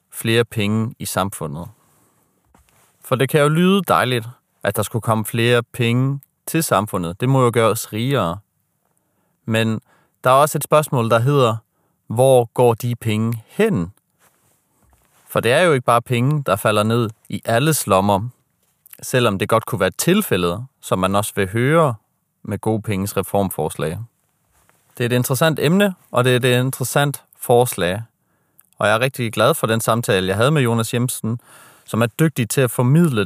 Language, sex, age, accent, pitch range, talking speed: Danish, male, 30-49, native, 105-135 Hz, 170 wpm